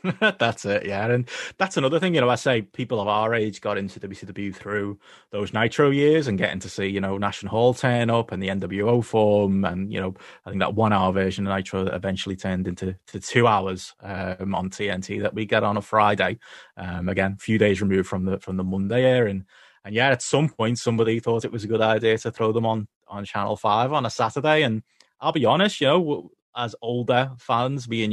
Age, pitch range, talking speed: 30-49, 100-130 Hz, 235 wpm